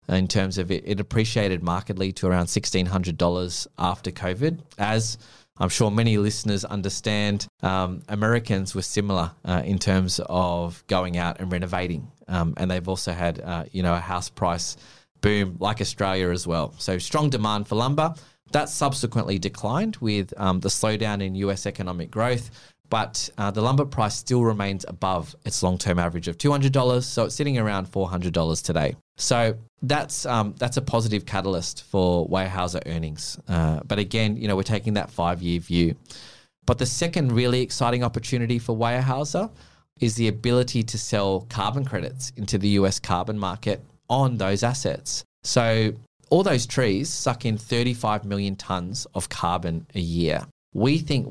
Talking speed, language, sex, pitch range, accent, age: 165 wpm, English, male, 95-120 Hz, Australian, 20-39